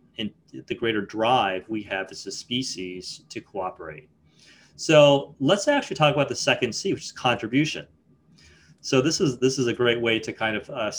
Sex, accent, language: male, American, English